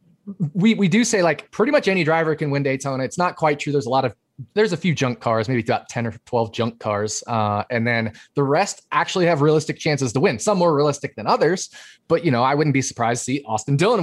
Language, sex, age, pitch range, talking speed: English, male, 20-39, 120-150 Hz, 250 wpm